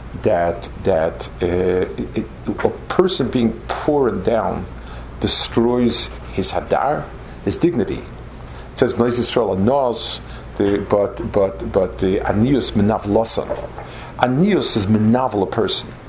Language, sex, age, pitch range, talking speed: English, male, 50-69, 95-120 Hz, 115 wpm